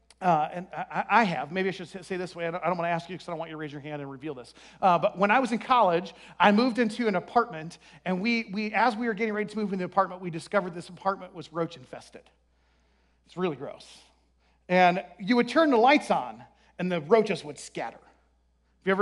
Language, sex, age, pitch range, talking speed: English, male, 40-59, 175-235 Hz, 250 wpm